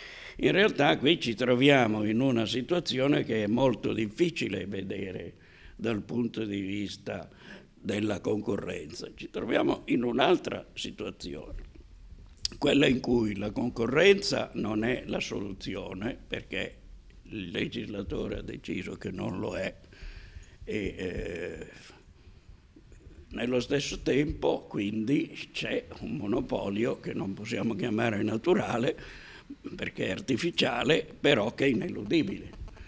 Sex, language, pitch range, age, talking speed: male, Italian, 95-120 Hz, 60-79, 115 wpm